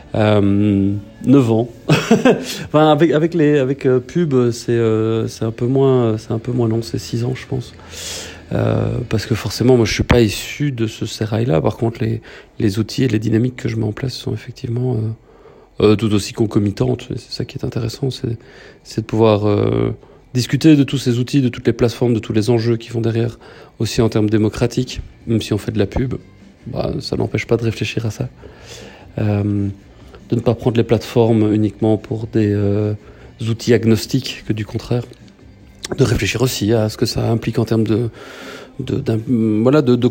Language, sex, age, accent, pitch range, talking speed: French, male, 40-59, French, 110-125 Hz, 195 wpm